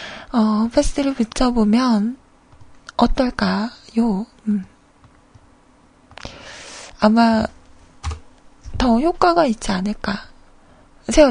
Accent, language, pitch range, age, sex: native, Korean, 225-325 Hz, 20-39, female